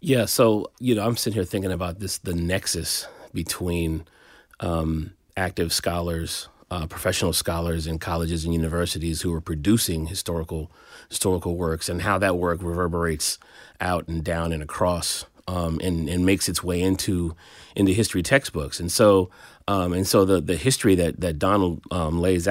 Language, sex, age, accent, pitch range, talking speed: English, male, 30-49, American, 85-95 Hz, 165 wpm